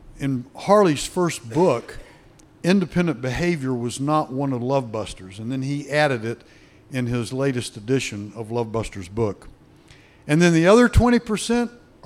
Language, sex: English, male